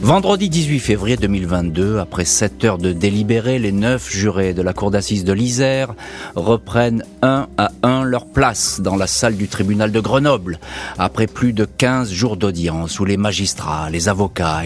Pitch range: 90-115 Hz